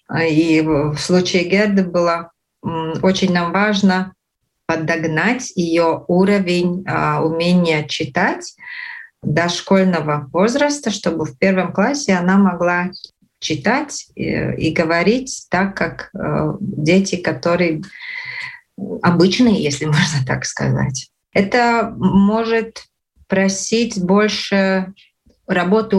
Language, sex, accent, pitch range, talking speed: Russian, female, native, 165-200 Hz, 90 wpm